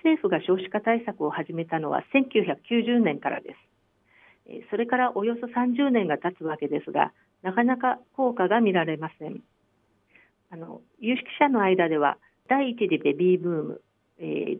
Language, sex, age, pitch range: Japanese, female, 50-69, 170-245 Hz